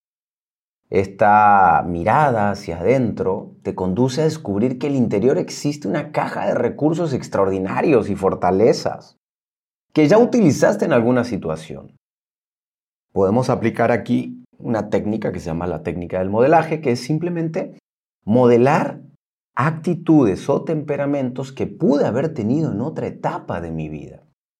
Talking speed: 130 wpm